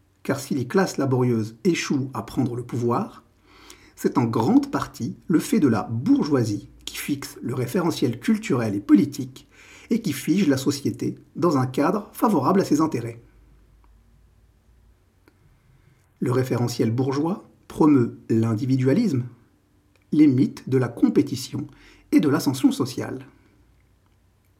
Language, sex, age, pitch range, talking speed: French, male, 50-69, 105-150 Hz, 125 wpm